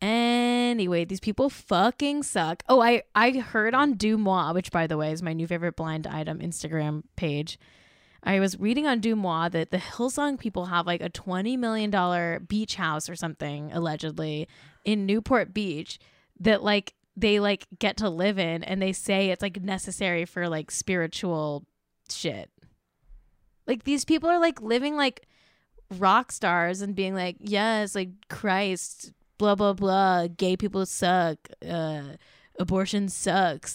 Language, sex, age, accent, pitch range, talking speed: English, female, 10-29, American, 175-225 Hz, 155 wpm